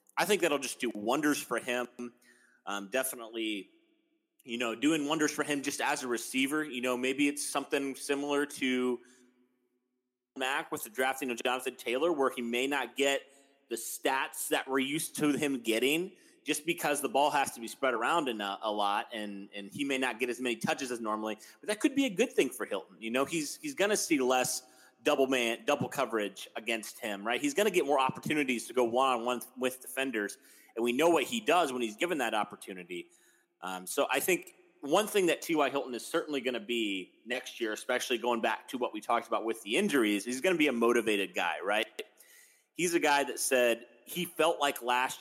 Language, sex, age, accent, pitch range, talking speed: English, male, 30-49, American, 120-150 Hz, 215 wpm